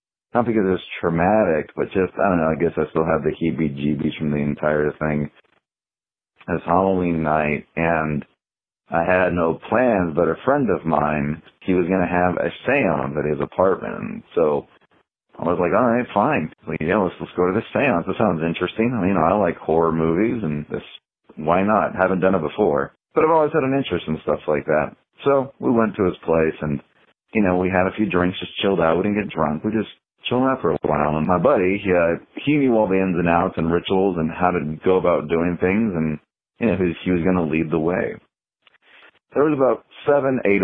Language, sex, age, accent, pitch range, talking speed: English, male, 40-59, American, 80-100 Hz, 225 wpm